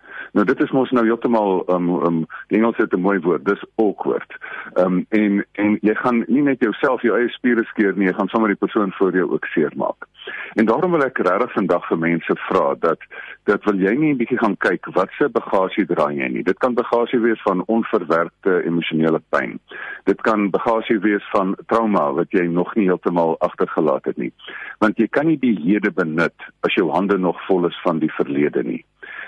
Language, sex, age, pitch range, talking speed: English, male, 50-69, 90-115 Hz, 210 wpm